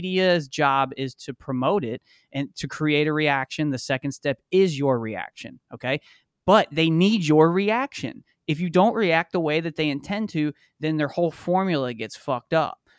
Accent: American